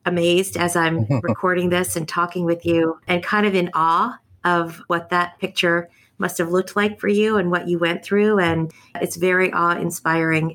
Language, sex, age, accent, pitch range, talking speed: English, female, 40-59, American, 165-205 Hz, 190 wpm